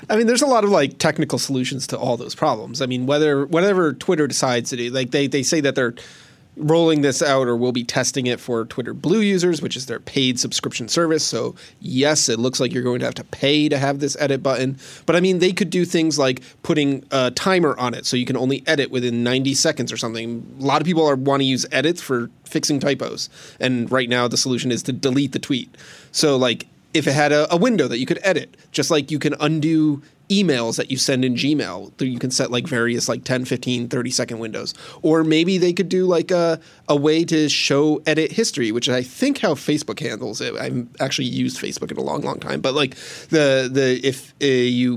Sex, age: male, 30-49